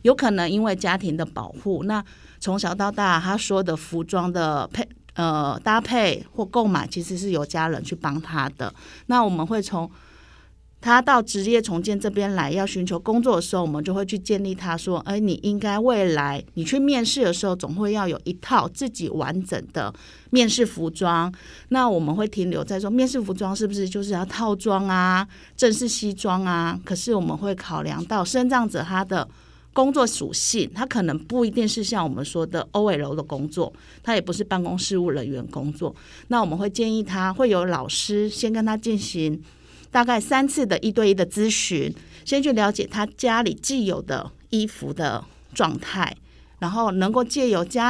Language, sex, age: Chinese, female, 30-49